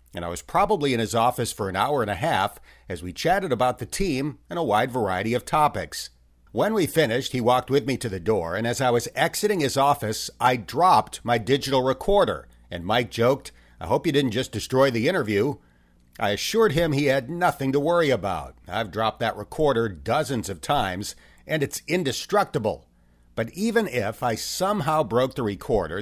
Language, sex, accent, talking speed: English, male, American, 195 wpm